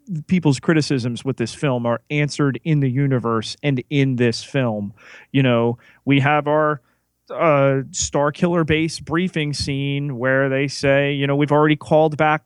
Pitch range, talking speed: 125-160 Hz, 160 wpm